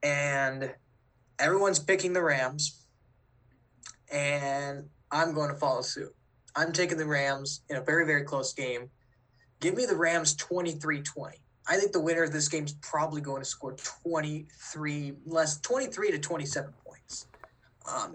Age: 20-39